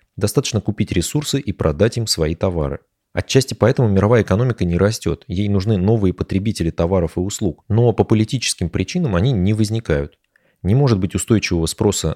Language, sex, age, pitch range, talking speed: Russian, male, 20-39, 85-110 Hz, 165 wpm